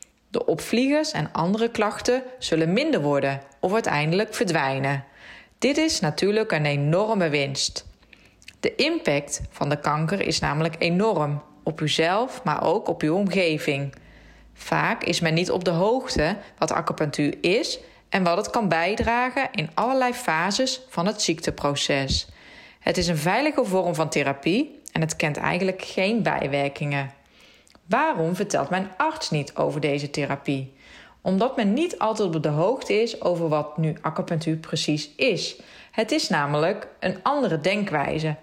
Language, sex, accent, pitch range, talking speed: Dutch, female, Dutch, 155-225 Hz, 145 wpm